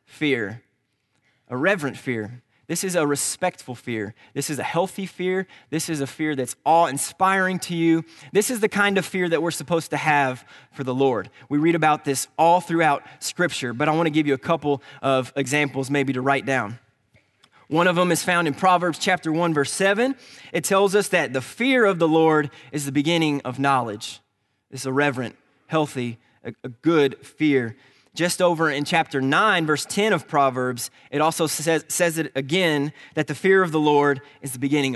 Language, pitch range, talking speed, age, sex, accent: English, 130-170 Hz, 195 wpm, 20-39, male, American